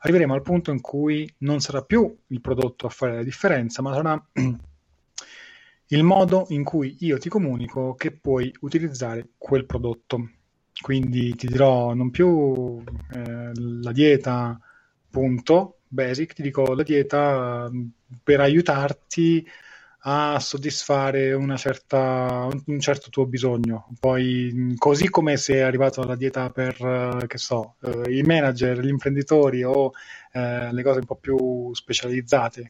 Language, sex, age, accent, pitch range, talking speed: Italian, male, 20-39, native, 125-145 Hz, 130 wpm